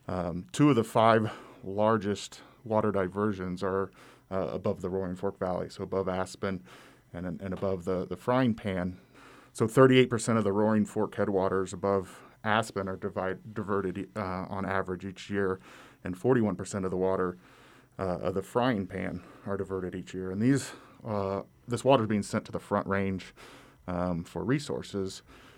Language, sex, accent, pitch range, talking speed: English, male, American, 95-110 Hz, 170 wpm